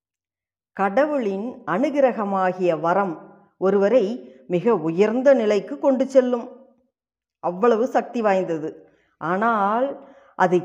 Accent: native